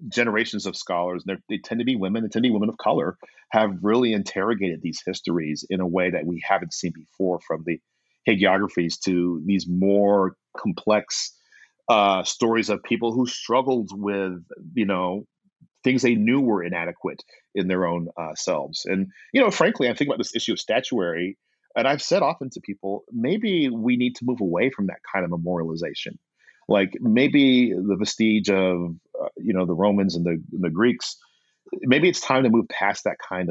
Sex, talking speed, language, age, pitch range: male, 190 wpm, English, 40-59, 90-105 Hz